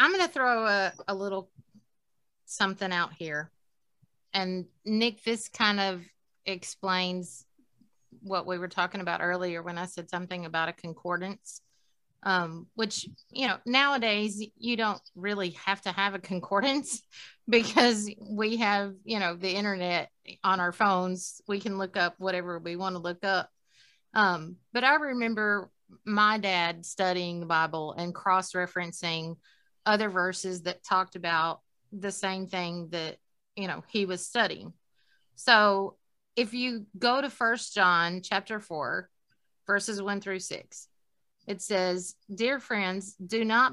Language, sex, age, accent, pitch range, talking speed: English, female, 30-49, American, 180-225 Hz, 145 wpm